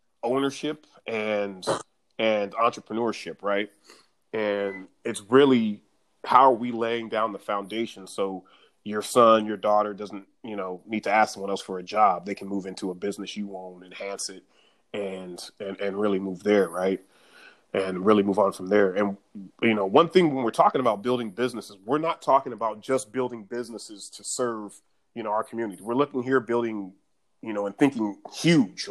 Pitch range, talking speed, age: 100-120 Hz, 180 wpm, 30-49